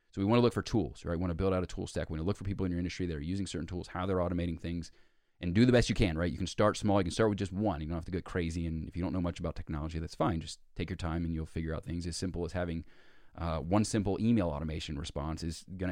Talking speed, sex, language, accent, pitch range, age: 330 wpm, male, English, American, 85-105 Hz, 30-49